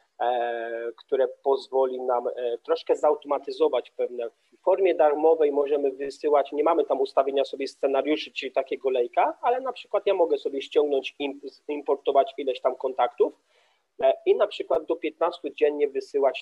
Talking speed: 150 wpm